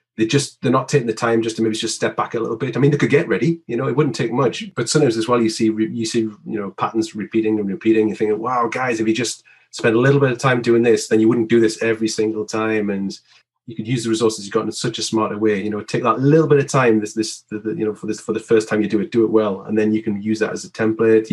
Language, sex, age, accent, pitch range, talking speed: English, male, 30-49, British, 105-115 Hz, 295 wpm